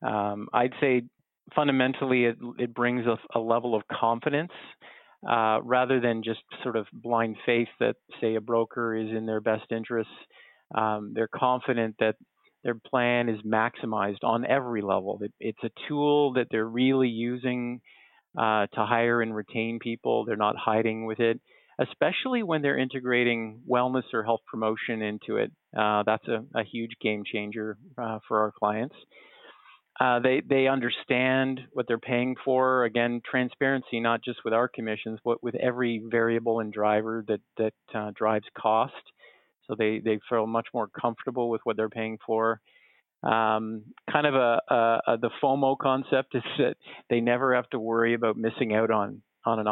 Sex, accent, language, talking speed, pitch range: male, American, English, 170 wpm, 110-125 Hz